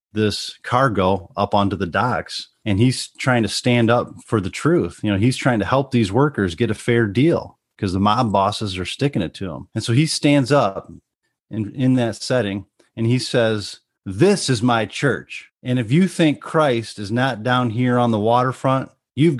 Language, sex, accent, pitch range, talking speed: English, male, American, 95-125 Hz, 200 wpm